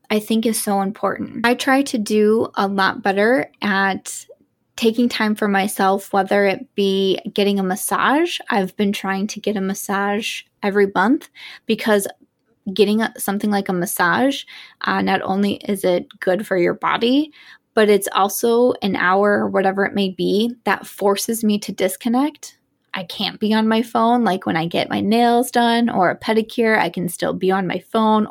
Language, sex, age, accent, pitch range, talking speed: English, female, 20-39, American, 195-225 Hz, 180 wpm